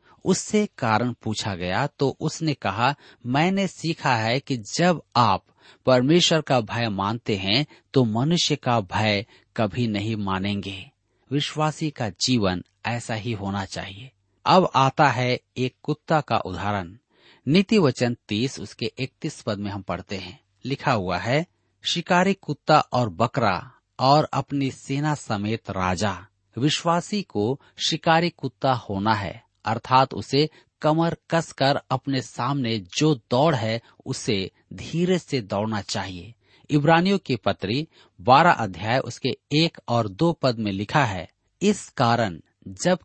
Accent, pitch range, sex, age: native, 105-150 Hz, male, 40-59